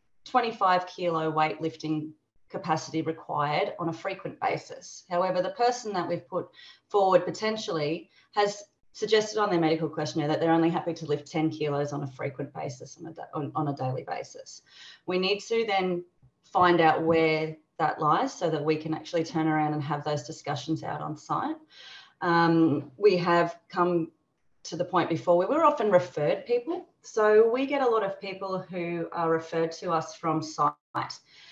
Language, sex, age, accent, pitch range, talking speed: English, female, 30-49, Australian, 155-190 Hz, 175 wpm